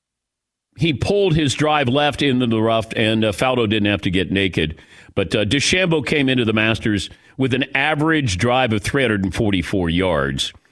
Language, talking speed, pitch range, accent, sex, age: English, 170 wpm, 95-135 Hz, American, male, 40-59